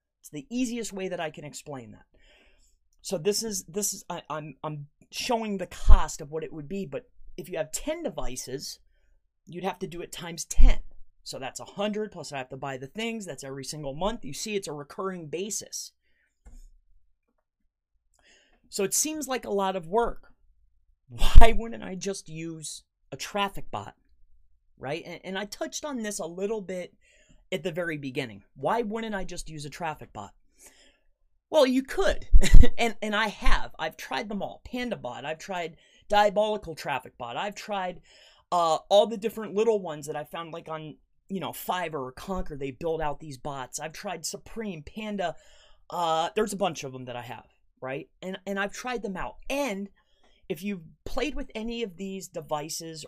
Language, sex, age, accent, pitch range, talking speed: English, male, 30-49, American, 150-205 Hz, 185 wpm